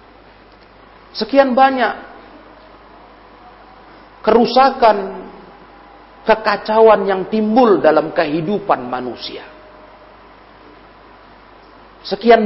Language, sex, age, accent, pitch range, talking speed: Indonesian, male, 40-59, native, 200-260 Hz, 50 wpm